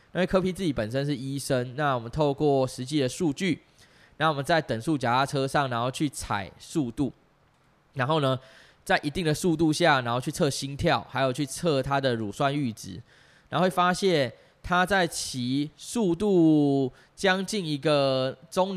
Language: Chinese